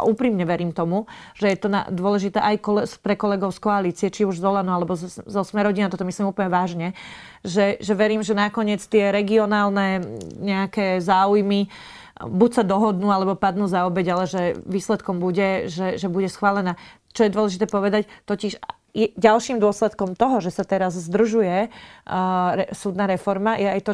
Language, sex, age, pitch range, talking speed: Slovak, female, 30-49, 190-210 Hz, 180 wpm